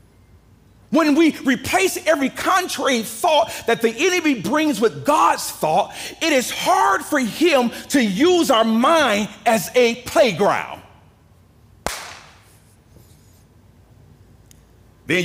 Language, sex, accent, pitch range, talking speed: English, male, American, 120-190 Hz, 100 wpm